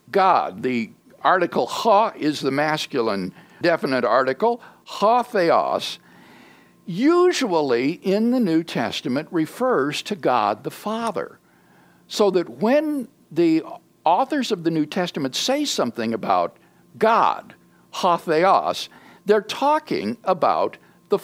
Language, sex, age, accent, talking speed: English, male, 60-79, American, 115 wpm